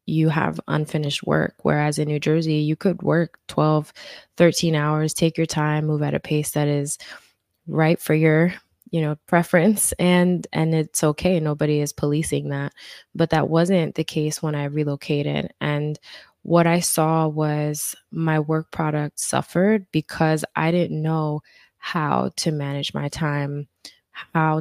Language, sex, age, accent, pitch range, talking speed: English, female, 20-39, American, 150-170 Hz, 155 wpm